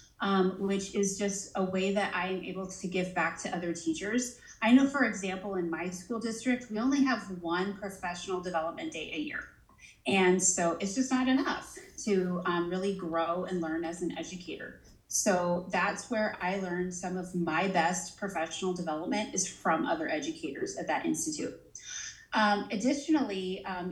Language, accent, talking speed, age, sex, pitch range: English, American, 170 wpm, 30-49, female, 180-220 Hz